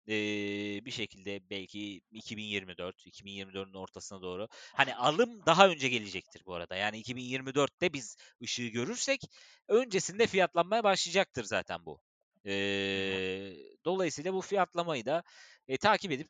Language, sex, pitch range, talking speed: Turkish, male, 105-170 Hz, 115 wpm